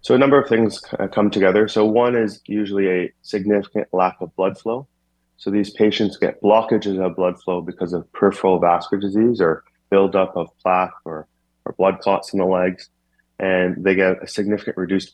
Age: 30-49